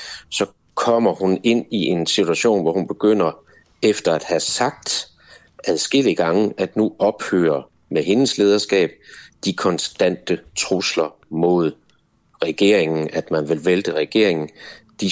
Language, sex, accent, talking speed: Danish, male, native, 130 wpm